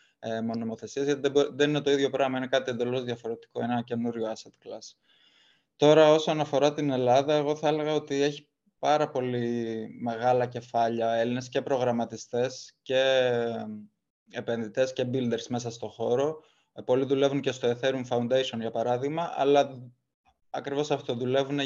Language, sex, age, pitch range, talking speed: Greek, male, 20-39, 120-140 Hz, 140 wpm